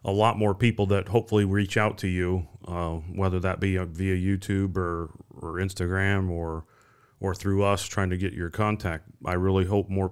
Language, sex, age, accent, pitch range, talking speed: English, male, 30-49, American, 90-100 Hz, 190 wpm